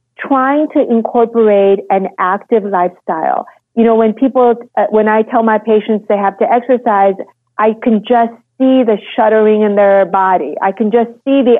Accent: American